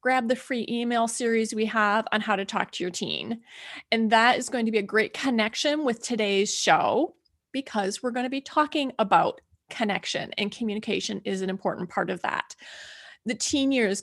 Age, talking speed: 30-49, 195 wpm